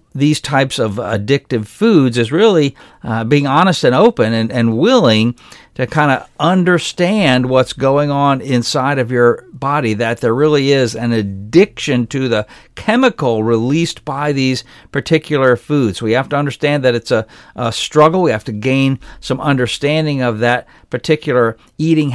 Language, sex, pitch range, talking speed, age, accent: English, male, 115-145 Hz, 160 wpm, 50-69, American